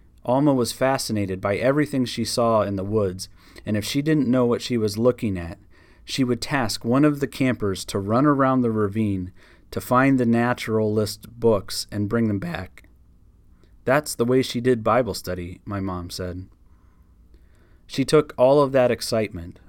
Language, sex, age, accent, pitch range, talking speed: English, male, 30-49, American, 95-120 Hz, 175 wpm